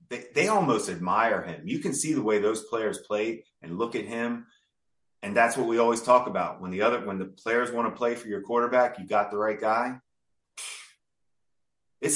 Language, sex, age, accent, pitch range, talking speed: English, male, 30-49, American, 110-145 Hz, 205 wpm